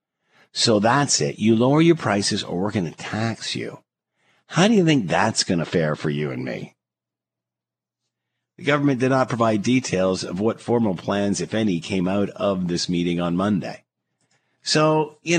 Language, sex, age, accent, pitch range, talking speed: English, male, 50-69, American, 95-135 Hz, 180 wpm